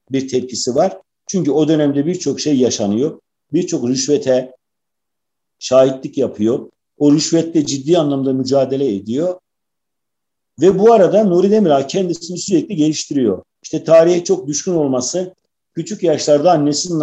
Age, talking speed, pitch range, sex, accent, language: 50-69, 125 wpm, 140-175 Hz, male, native, Turkish